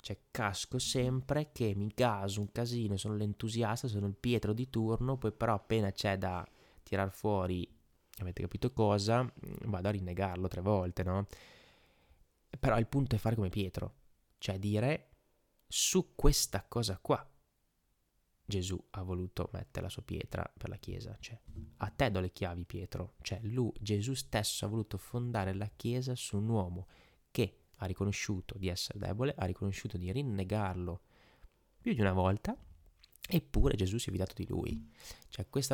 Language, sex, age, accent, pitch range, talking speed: Italian, male, 20-39, native, 95-120 Hz, 160 wpm